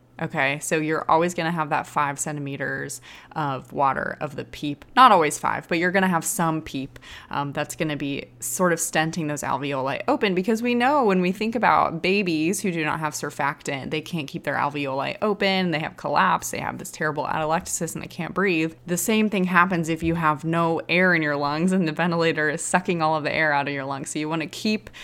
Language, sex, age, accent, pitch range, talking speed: English, female, 20-39, American, 145-180 Hz, 230 wpm